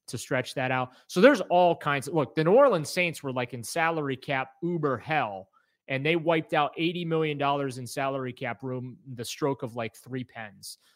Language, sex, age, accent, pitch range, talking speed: English, male, 30-49, American, 130-160 Hz, 205 wpm